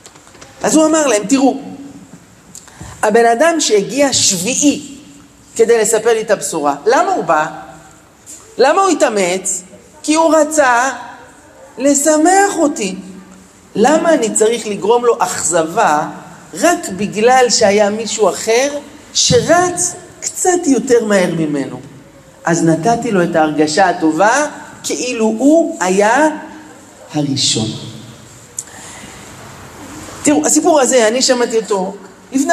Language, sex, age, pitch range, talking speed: Hebrew, male, 50-69, 195-285 Hz, 105 wpm